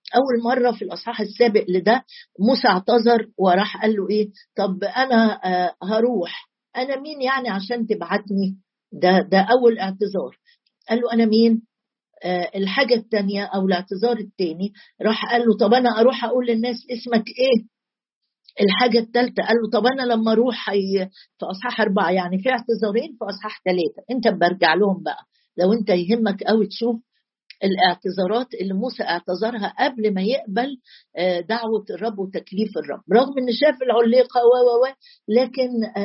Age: 50-69